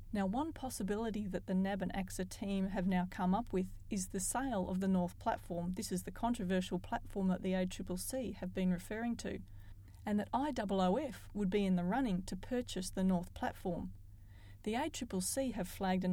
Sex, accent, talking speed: female, Australian, 190 wpm